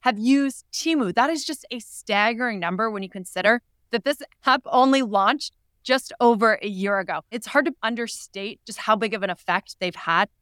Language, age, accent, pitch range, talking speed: English, 20-39, American, 185-240 Hz, 195 wpm